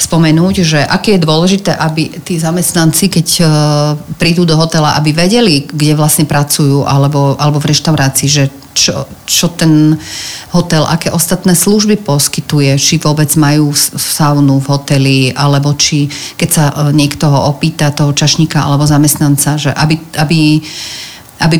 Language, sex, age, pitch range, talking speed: Slovak, female, 40-59, 140-165 Hz, 135 wpm